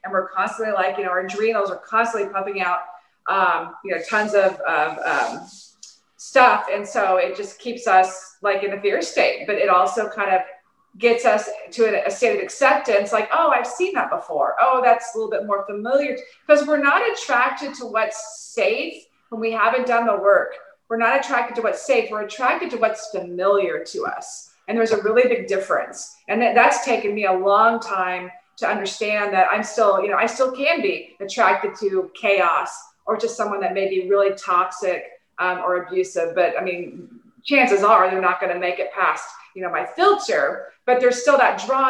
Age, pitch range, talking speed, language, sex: 30-49, 195-250 Hz, 200 wpm, English, female